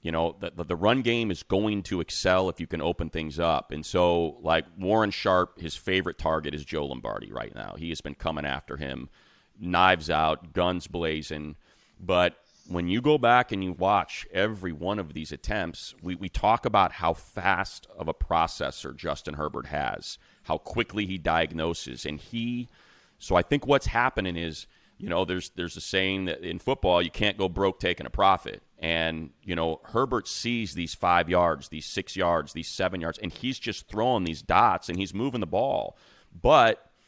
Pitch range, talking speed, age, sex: 80-110 Hz, 195 wpm, 30-49, male